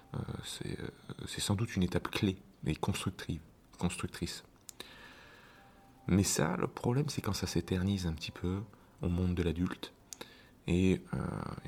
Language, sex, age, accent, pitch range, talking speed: French, male, 30-49, French, 85-110 Hz, 150 wpm